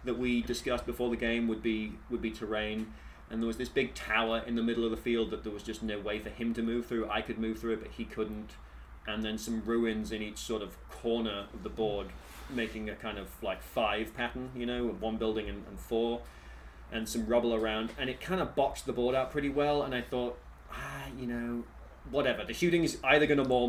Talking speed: 245 wpm